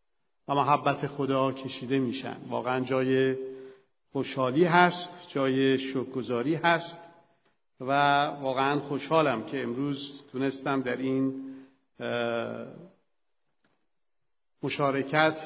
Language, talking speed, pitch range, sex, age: Persian, 80 wpm, 135-175 Hz, male, 50-69